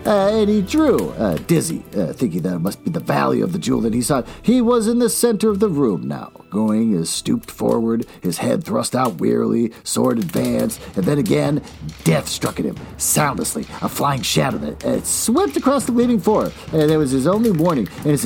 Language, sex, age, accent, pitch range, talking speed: English, male, 50-69, American, 150-225 Hz, 215 wpm